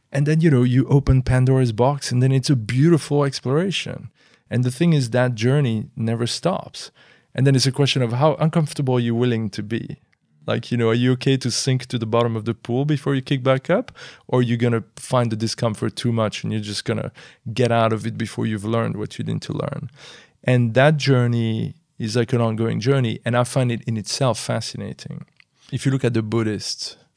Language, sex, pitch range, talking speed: English, male, 115-135 Hz, 220 wpm